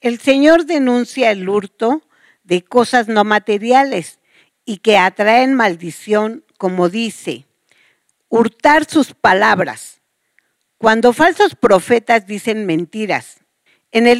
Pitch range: 190-275 Hz